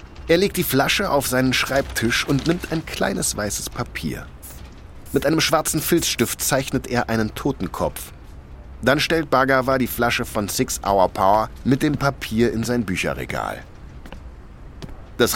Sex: male